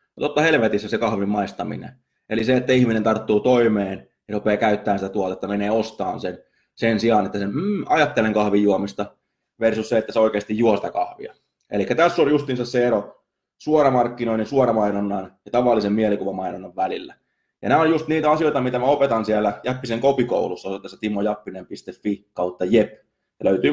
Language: Finnish